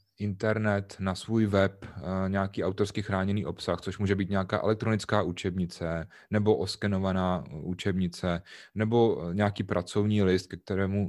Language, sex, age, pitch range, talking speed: Czech, male, 30-49, 95-105 Hz, 125 wpm